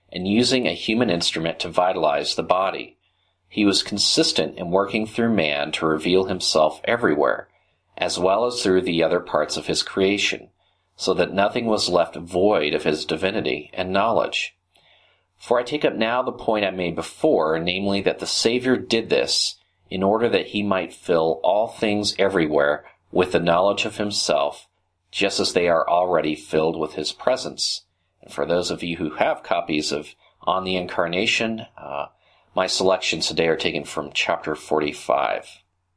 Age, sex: 40-59, male